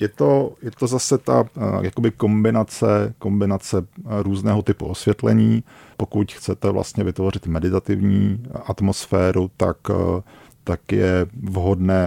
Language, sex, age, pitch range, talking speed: Czech, male, 40-59, 90-100 Hz, 100 wpm